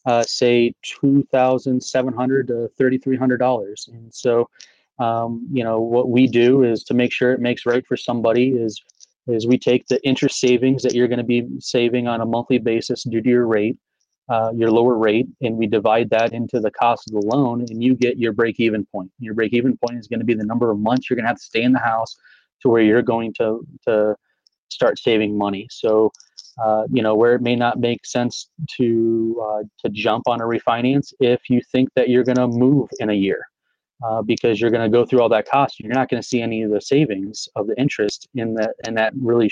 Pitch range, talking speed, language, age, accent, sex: 110-125 Hz, 225 wpm, English, 30-49, American, male